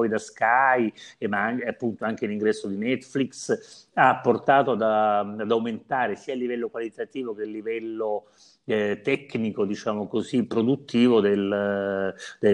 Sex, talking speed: male, 135 wpm